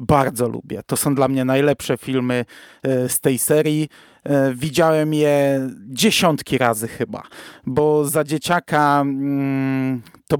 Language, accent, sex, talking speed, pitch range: Polish, native, male, 115 wpm, 135-160 Hz